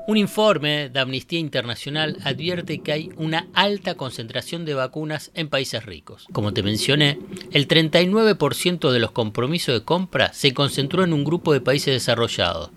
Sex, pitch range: male, 125-190 Hz